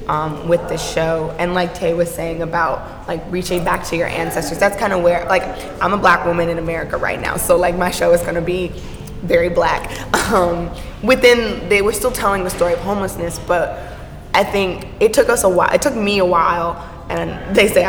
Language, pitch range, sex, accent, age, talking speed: English, 165-190 Hz, female, American, 20-39, 215 wpm